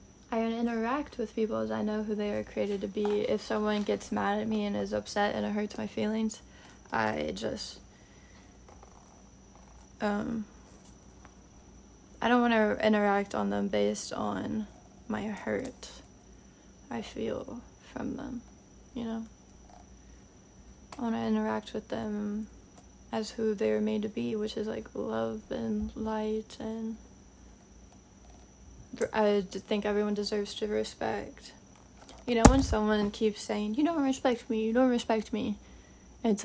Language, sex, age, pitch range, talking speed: English, female, 20-39, 200-225 Hz, 145 wpm